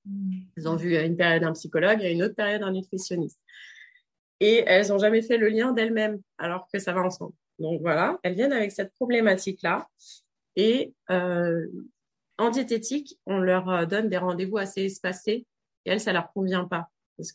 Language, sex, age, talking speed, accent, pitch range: French, female, 30-49, 185 wpm, French, 175-210 Hz